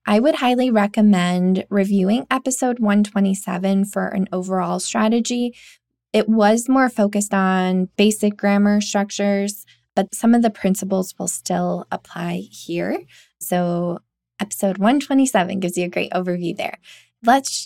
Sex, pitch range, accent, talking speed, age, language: female, 190-225 Hz, American, 130 wpm, 20-39, English